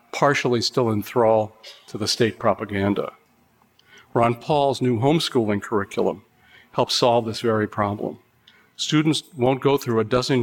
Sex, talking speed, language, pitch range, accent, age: male, 140 wpm, English, 110-125 Hz, American, 50-69